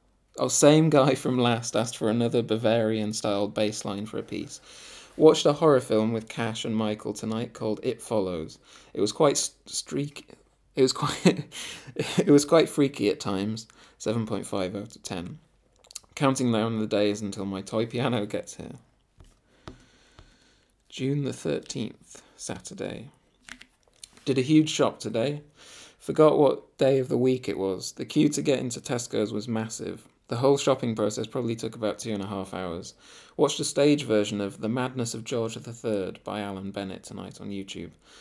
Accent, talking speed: British, 170 wpm